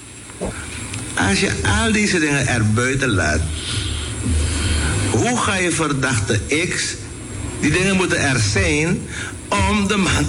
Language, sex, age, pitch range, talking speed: Dutch, male, 60-79, 95-135 Hz, 120 wpm